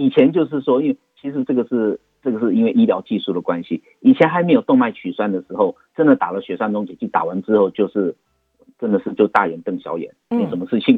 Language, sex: Chinese, male